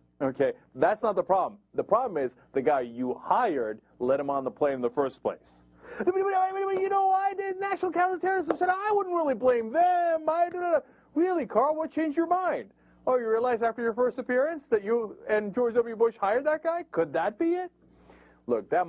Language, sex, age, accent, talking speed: English, male, 30-49, American, 200 wpm